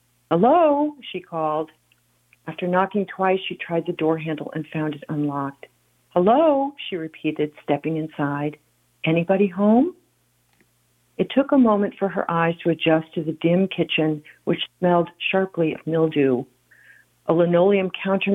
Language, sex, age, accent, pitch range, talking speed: English, female, 50-69, American, 150-190 Hz, 140 wpm